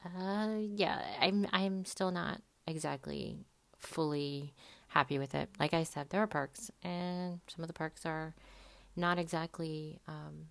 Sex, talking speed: female, 150 wpm